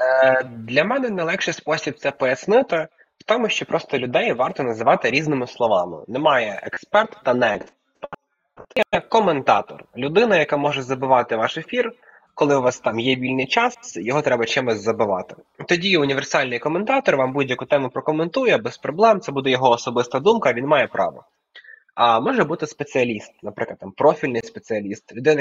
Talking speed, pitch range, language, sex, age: 150 wpm, 120-155 Hz, Ukrainian, male, 20-39